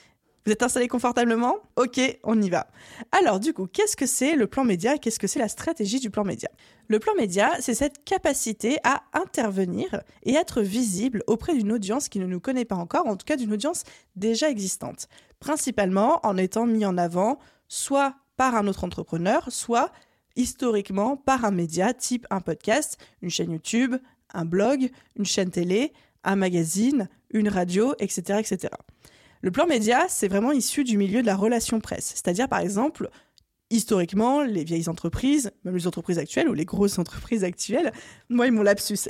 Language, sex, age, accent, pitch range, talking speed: French, female, 20-39, French, 195-255 Hz, 180 wpm